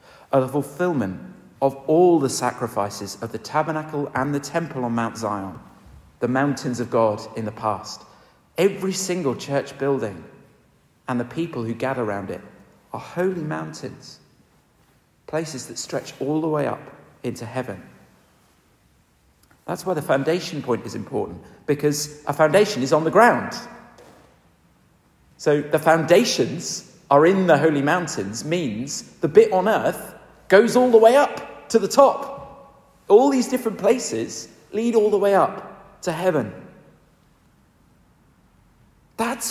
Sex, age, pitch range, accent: male, 40-59, 130-195 Hz, British